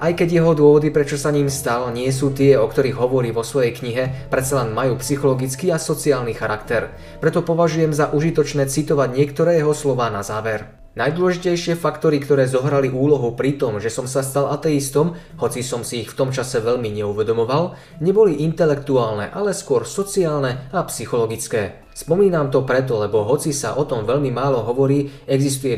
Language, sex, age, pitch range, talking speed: Slovak, male, 20-39, 120-160 Hz, 170 wpm